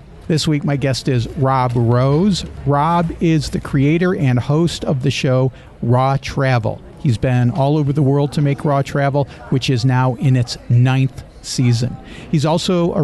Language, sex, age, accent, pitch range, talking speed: English, male, 50-69, American, 125-150 Hz, 175 wpm